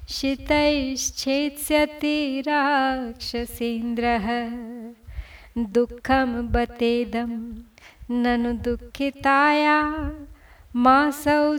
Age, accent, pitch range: 30-49, native, 240-300 Hz